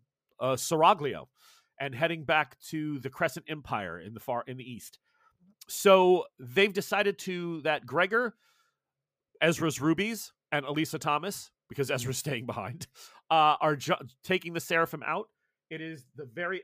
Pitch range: 140-180 Hz